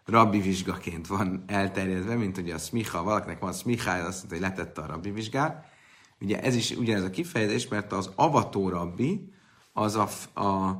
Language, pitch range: Hungarian, 90-115 Hz